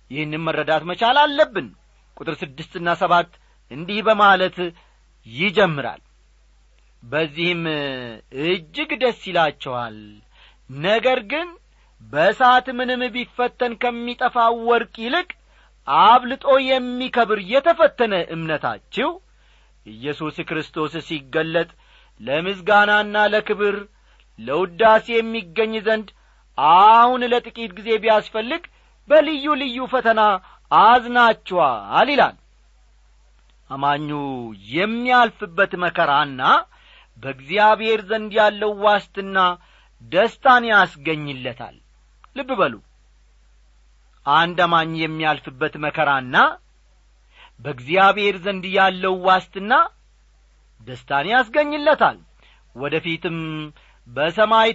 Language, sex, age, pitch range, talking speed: Amharic, male, 40-59, 150-225 Hz, 70 wpm